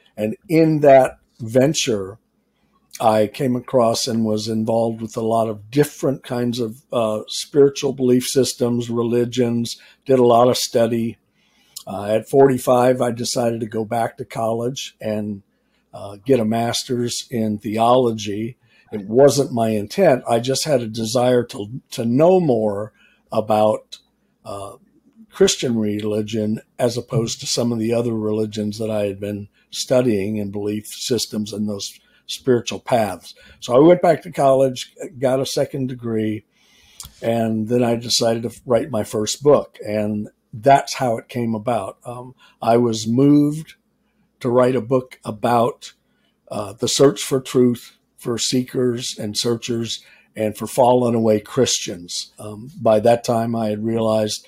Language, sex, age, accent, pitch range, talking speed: English, male, 50-69, American, 110-130 Hz, 150 wpm